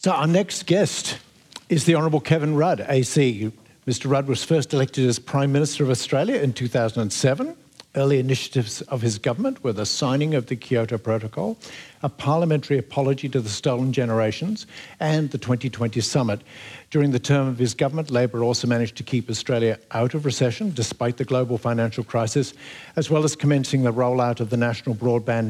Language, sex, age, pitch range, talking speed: English, male, 60-79, 115-140 Hz, 175 wpm